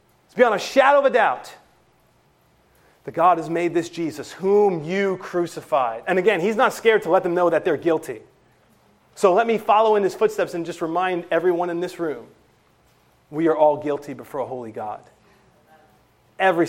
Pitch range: 155-200 Hz